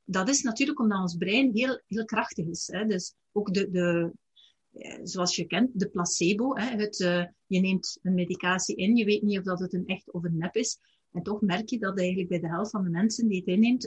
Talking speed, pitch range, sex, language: 240 wpm, 180-215 Hz, female, Dutch